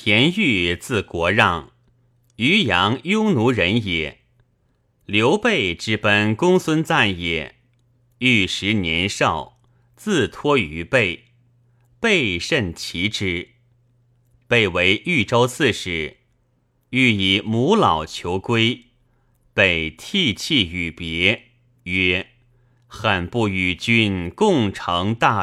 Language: Chinese